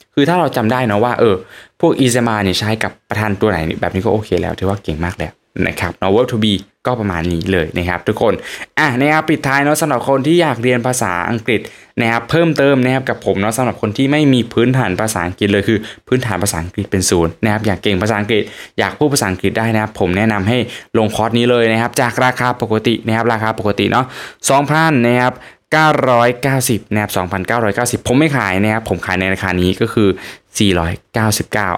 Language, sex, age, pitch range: Thai, male, 20-39, 100-125 Hz